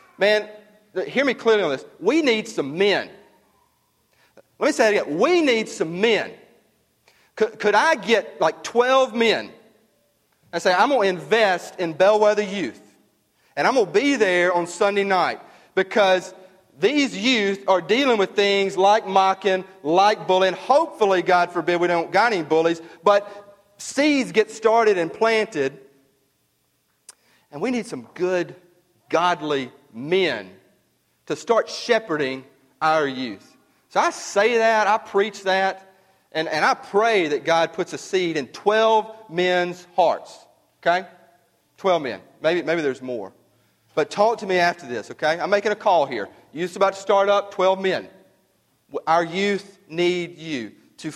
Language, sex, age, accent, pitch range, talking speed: English, male, 40-59, American, 160-210 Hz, 155 wpm